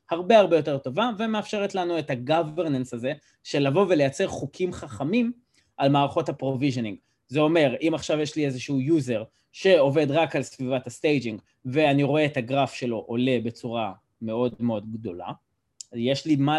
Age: 20-39